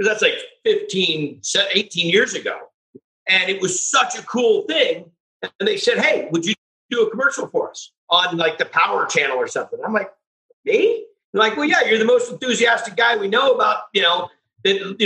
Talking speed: 195 wpm